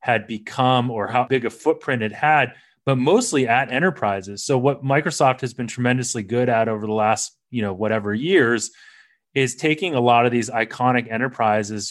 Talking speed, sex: 180 wpm, male